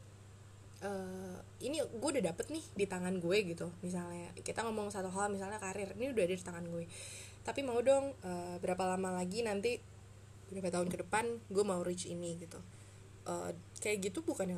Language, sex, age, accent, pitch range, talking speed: Indonesian, female, 20-39, native, 170-200 Hz, 185 wpm